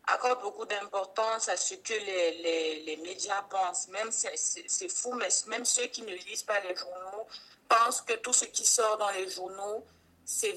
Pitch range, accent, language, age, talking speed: 185-260 Hz, French, French, 50-69, 200 wpm